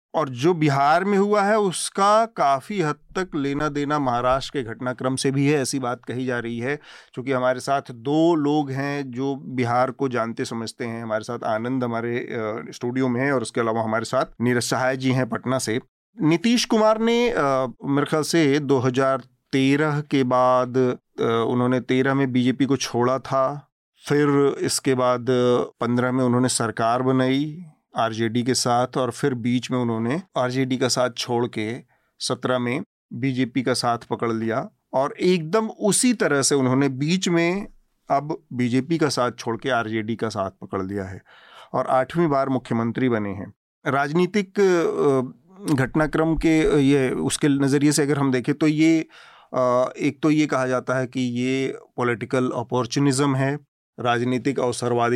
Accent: native